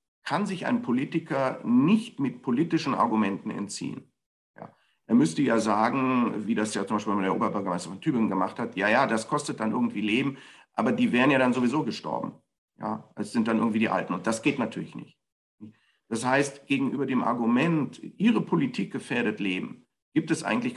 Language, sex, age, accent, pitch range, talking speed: German, male, 50-69, German, 105-155 Hz, 185 wpm